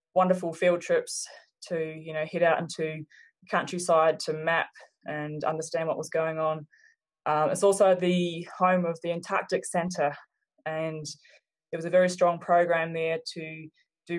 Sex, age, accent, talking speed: female, 20-39, Australian, 160 wpm